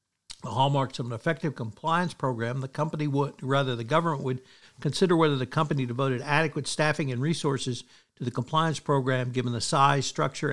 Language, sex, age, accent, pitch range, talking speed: English, male, 60-79, American, 130-150 Hz, 175 wpm